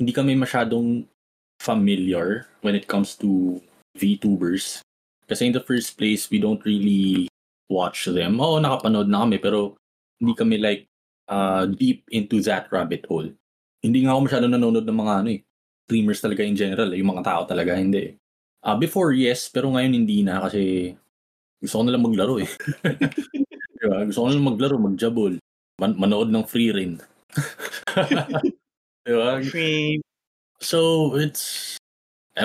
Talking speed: 135 wpm